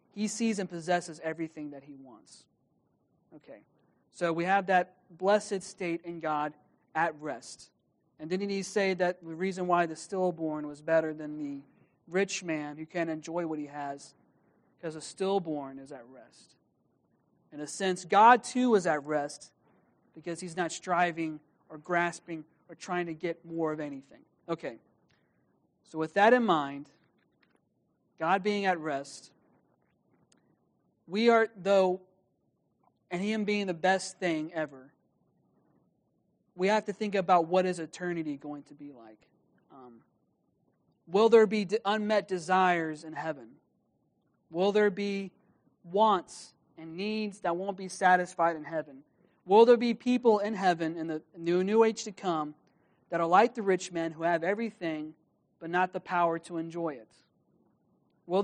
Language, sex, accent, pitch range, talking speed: English, male, American, 160-195 Hz, 155 wpm